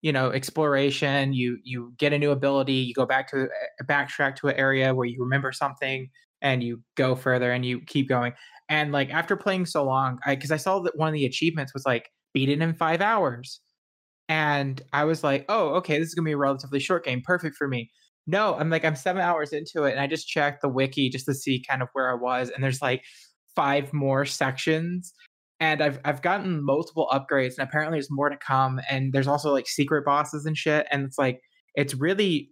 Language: English